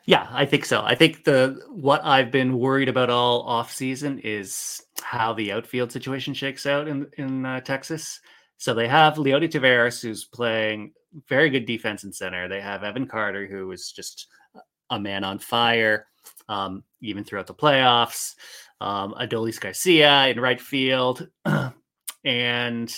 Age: 30-49